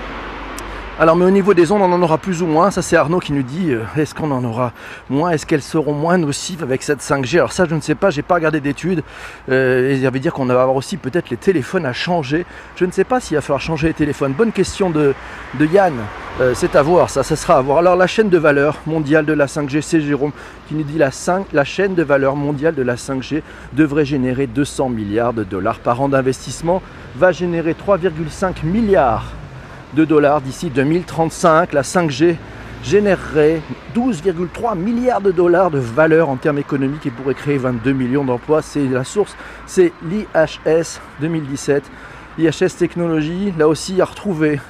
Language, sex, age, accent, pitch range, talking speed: French, male, 40-59, French, 135-175 Hz, 200 wpm